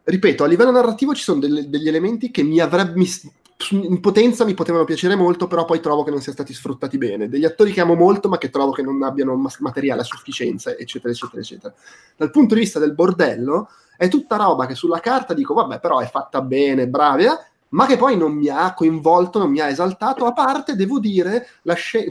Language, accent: Italian, native